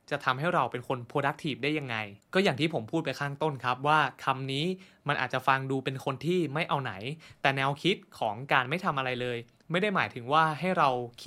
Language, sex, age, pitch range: Thai, male, 20-39, 130-165 Hz